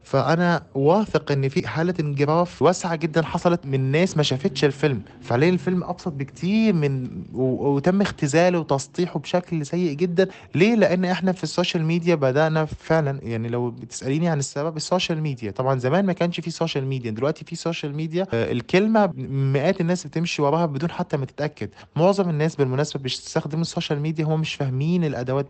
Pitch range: 130-165 Hz